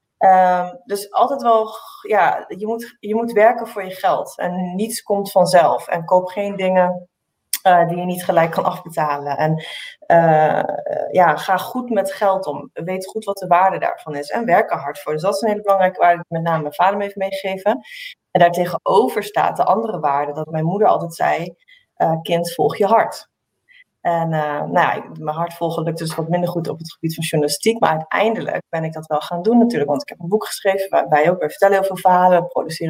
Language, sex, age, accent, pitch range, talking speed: Dutch, female, 30-49, Dutch, 165-205 Hz, 215 wpm